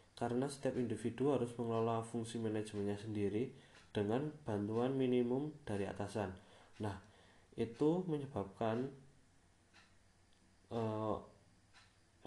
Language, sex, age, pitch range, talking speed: Indonesian, male, 20-39, 100-125 Hz, 85 wpm